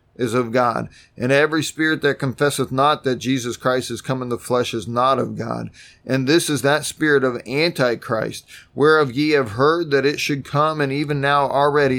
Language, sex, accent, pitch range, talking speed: English, male, American, 140-165 Hz, 200 wpm